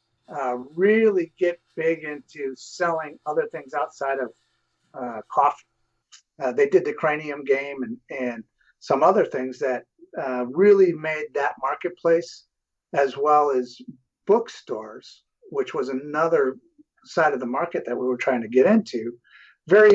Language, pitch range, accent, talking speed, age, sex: English, 130-210 Hz, American, 145 wpm, 50-69, male